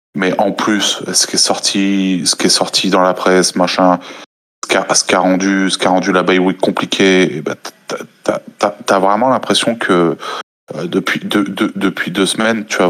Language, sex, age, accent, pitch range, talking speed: French, male, 20-39, French, 95-105 Hz, 220 wpm